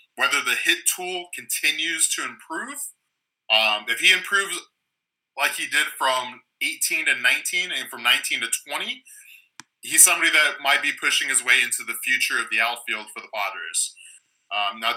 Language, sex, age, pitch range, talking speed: English, male, 20-39, 120-175 Hz, 165 wpm